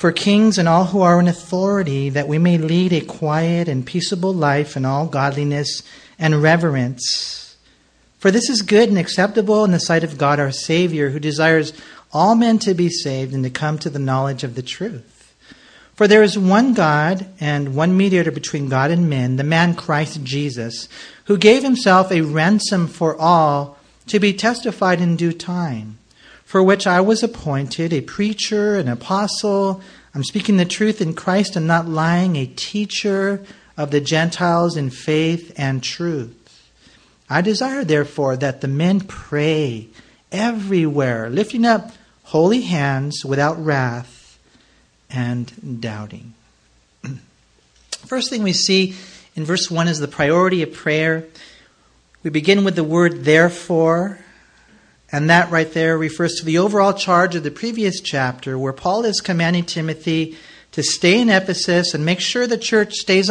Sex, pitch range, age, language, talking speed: male, 145-195 Hz, 40-59, English, 160 wpm